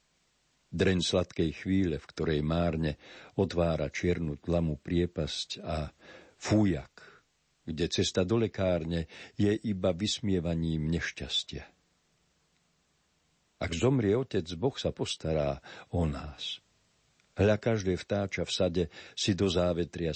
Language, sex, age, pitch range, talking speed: Slovak, male, 50-69, 80-100 Hz, 105 wpm